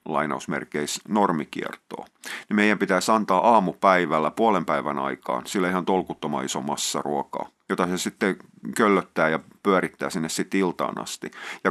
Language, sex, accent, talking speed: Finnish, male, native, 135 wpm